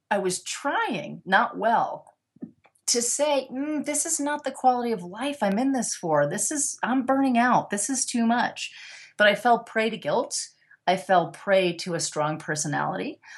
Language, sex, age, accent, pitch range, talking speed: English, female, 30-49, American, 160-220 Hz, 185 wpm